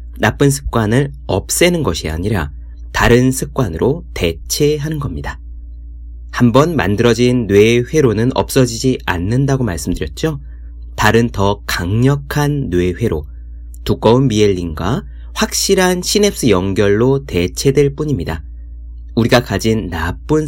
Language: Korean